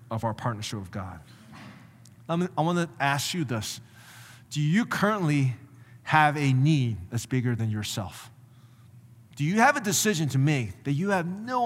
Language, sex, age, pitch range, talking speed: English, male, 30-49, 120-170 Hz, 170 wpm